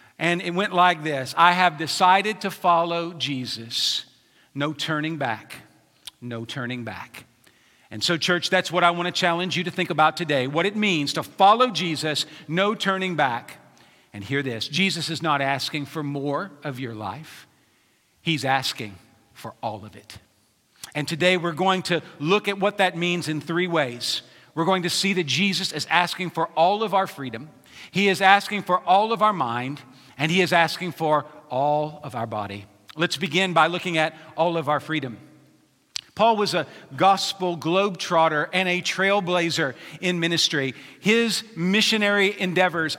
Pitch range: 150-195 Hz